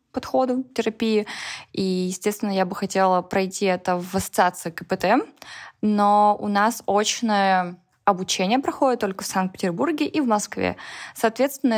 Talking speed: 125 wpm